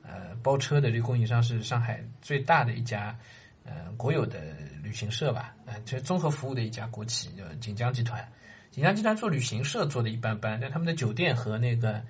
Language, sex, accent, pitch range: Chinese, male, native, 115-135 Hz